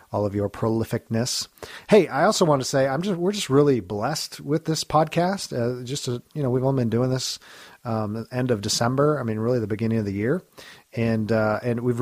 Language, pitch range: English, 110-130 Hz